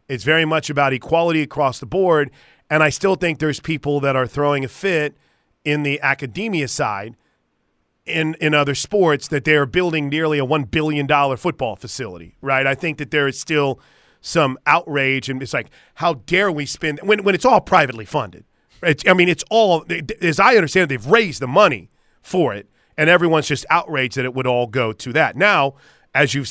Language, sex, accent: English, male, American